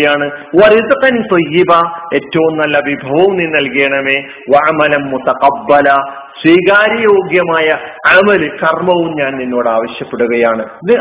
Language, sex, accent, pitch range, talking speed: Malayalam, male, native, 140-200 Hz, 105 wpm